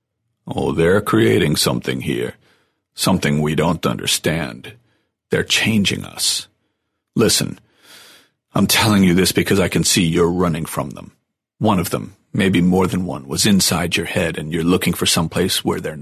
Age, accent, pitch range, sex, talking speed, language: 40-59, American, 90-110 Hz, male, 165 wpm, English